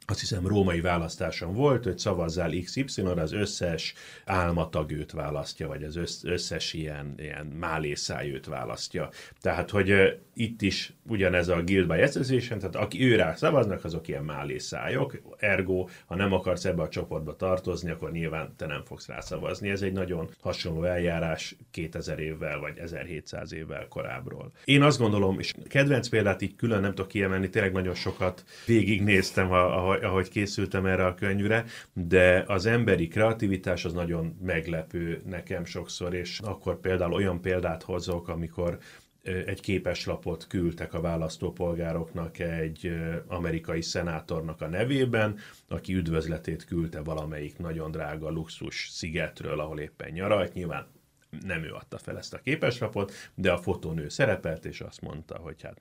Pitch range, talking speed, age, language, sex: 80-95 Hz, 145 wpm, 30-49, Hungarian, male